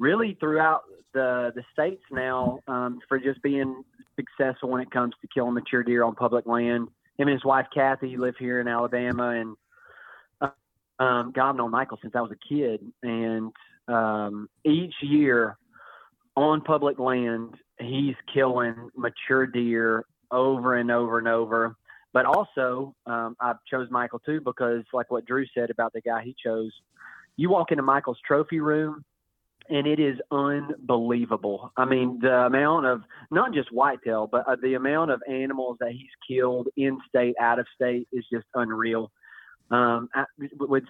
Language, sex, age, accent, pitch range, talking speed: English, male, 30-49, American, 120-135 Hz, 160 wpm